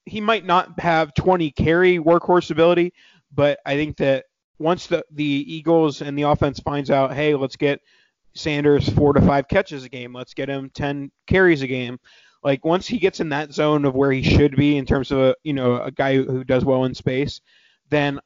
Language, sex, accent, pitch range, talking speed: English, male, American, 135-170 Hz, 210 wpm